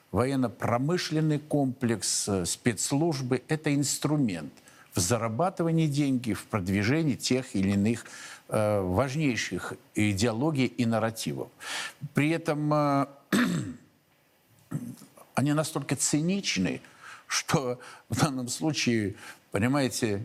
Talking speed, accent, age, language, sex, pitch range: 80 wpm, native, 50-69, Russian, male, 115-150 Hz